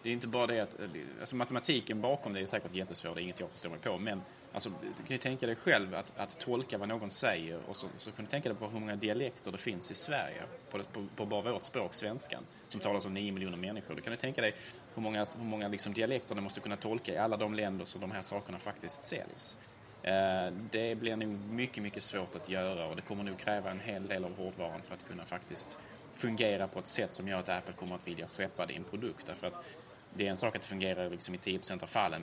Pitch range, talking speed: 95-120 Hz, 255 wpm